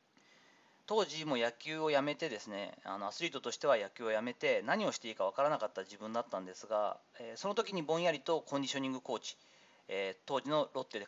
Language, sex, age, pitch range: Japanese, male, 40-59, 125-180 Hz